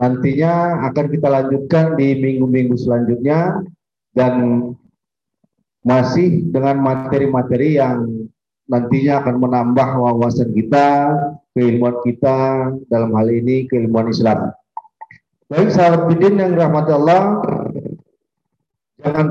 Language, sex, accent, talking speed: Indonesian, male, native, 95 wpm